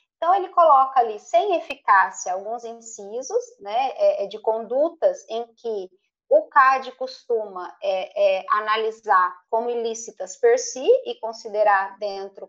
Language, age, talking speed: Portuguese, 20-39, 115 wpm